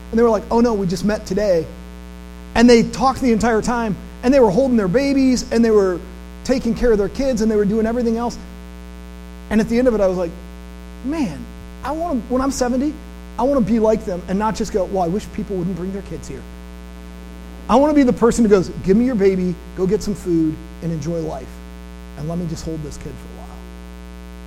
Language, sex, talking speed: English, male, 245 wpm